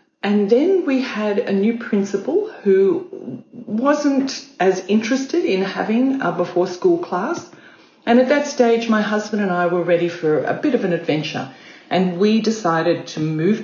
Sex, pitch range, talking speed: female, 175-240 Hz, 165 wpm